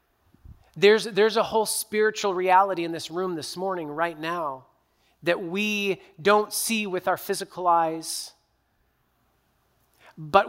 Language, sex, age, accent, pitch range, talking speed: English, male, 30-49, American, 160-190 Hz, 125 wpm